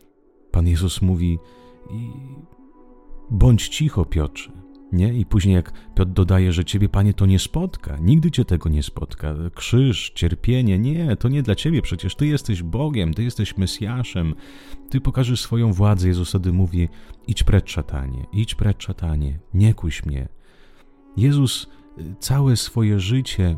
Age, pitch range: 30-49, 85-115 Hz